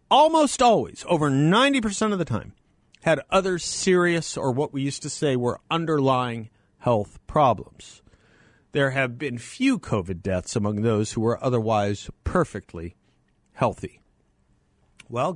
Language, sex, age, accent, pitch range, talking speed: English, male, 50-69, American, 100-150 Hz, 135 wpm